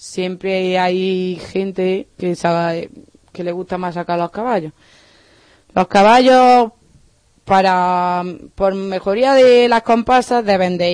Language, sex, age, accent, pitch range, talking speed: Spanish, female, 20-39, Spanish, 175-210 Hz, 120 wpm